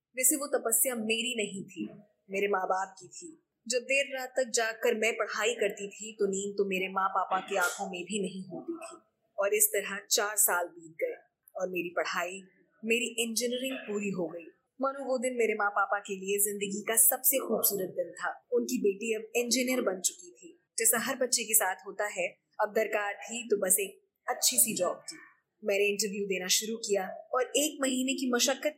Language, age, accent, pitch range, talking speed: Hindi, 20-39, native, 195-255 Hz, 195 wpm